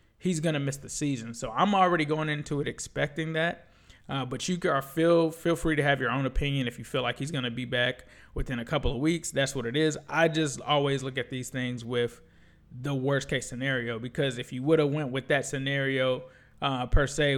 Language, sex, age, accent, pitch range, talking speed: English, male, 20-39, American, 125-155 Hz, 230 wpm